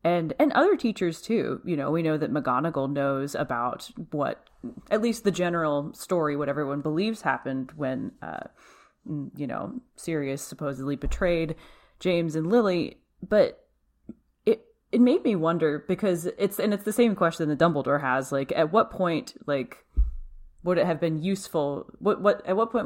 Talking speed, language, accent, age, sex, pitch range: 170 wpm, English, American, 30-49, female, 145-195 Hz